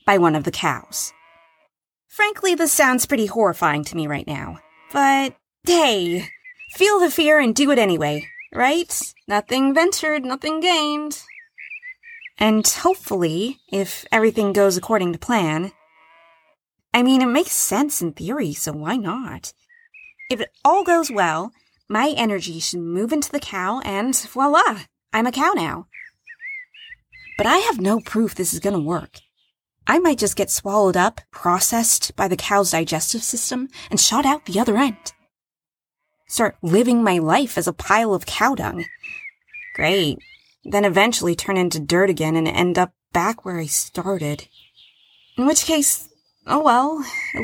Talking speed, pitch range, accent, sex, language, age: 155 wpm, 180-285 Hz, American, female, English, 20-39